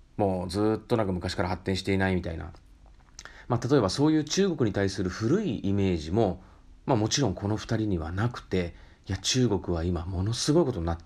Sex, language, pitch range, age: male, Japanese, 90-115 Hz, 40-59